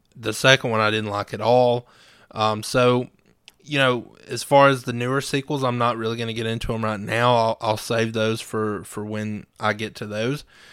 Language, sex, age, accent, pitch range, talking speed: English, male, 20-39, American, 110-120 Hz, 220 wpm